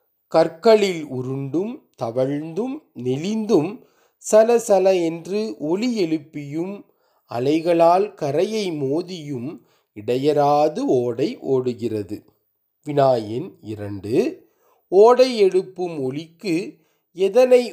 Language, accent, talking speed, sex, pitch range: Tamil, native, 70 wpm, male, 130-205 Hz